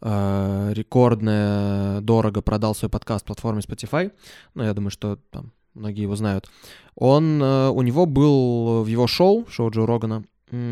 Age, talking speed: 20-39, 145 wpm